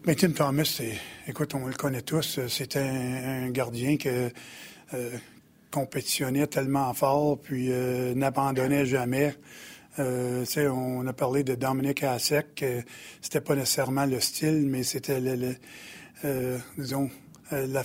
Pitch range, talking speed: 130-145 Hz, 150 wpm